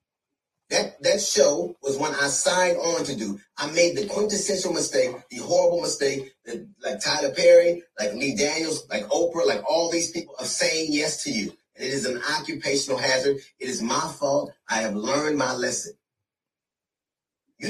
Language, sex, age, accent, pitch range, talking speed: English, male, 30-49, American, 140-210 Hz, 175 wpm